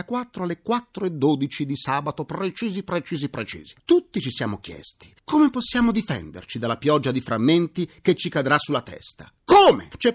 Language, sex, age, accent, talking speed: Italian, male, 40-59, native, 170 wpm